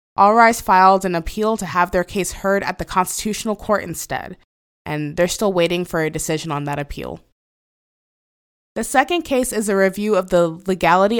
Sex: female